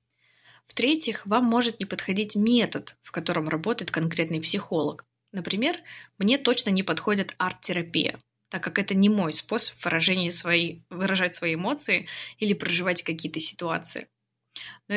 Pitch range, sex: 170-220 Hz, female